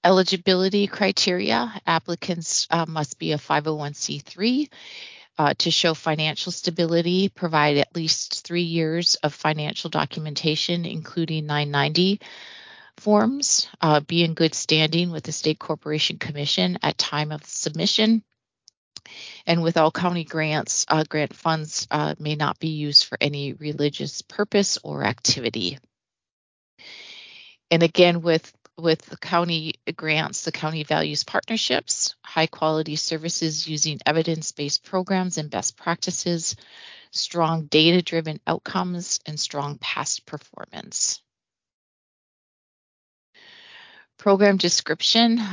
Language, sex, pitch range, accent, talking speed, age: English, female, 155-180 Hz, American, 115 wpm, 40-59